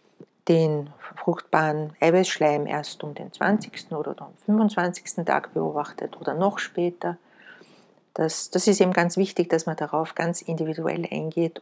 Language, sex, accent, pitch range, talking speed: German, female, Austrian, 160-185 Hz, 135 wpm